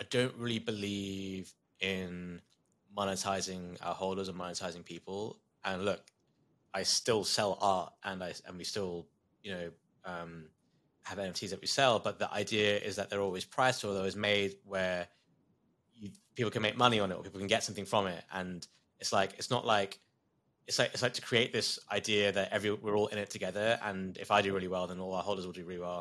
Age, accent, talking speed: 20-39, British, 210 wpm